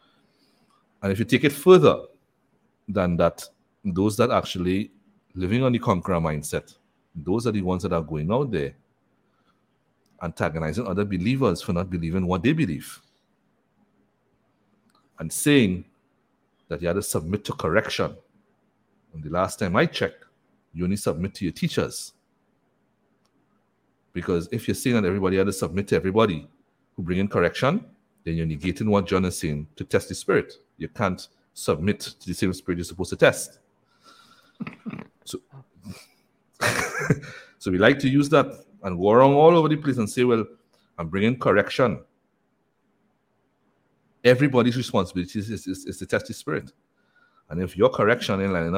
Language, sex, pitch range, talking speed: English, male, 90-115 Hz, 155 wpm